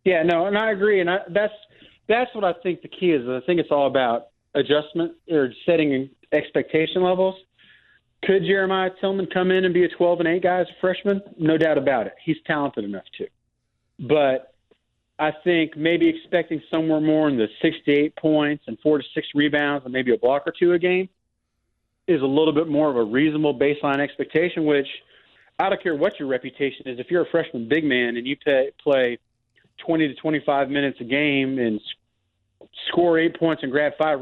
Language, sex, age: English, male, 40-59